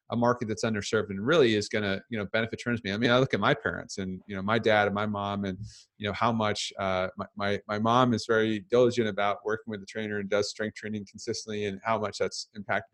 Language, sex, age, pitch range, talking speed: English, male, 30-49, 105-120 Hz, 265 wpm